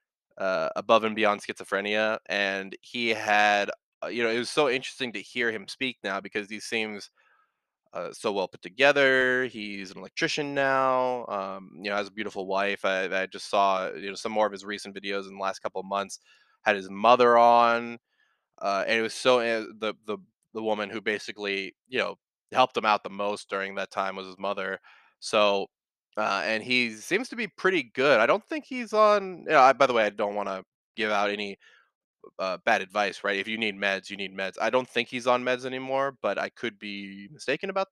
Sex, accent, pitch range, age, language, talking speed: male, American, 100-125 Hz, 20-39, English, 210 wpm